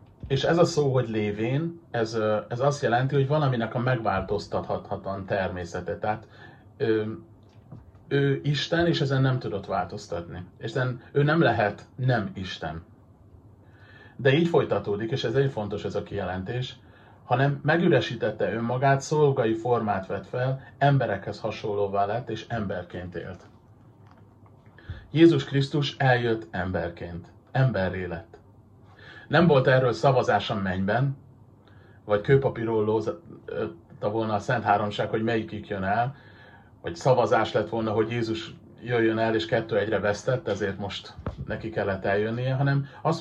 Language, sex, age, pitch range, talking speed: Hungarian, male, 30-49, 105-135 Hz, 130 wpm